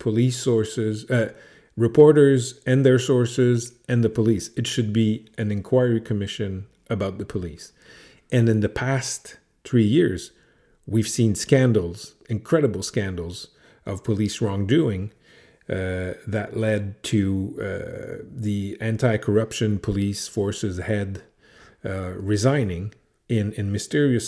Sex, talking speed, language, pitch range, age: male, 120 wpm, English, 105-125 Hz, 40-59